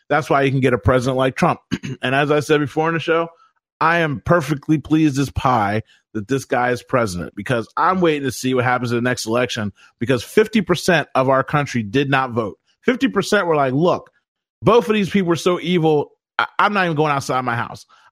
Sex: male